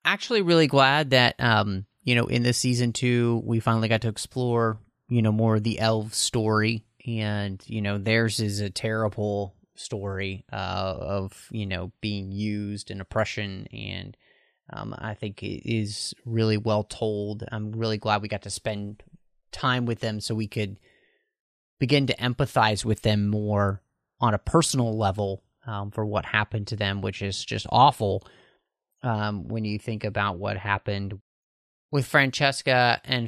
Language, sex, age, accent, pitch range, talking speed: English, male, 30-49, American, 105-130 Hz, 165 wpm